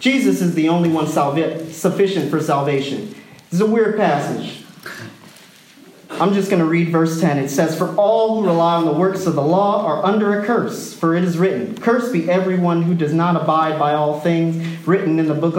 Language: English